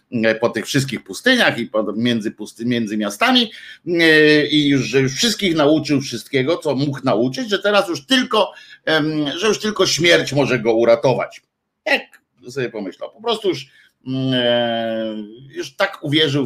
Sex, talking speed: male, 130 wpm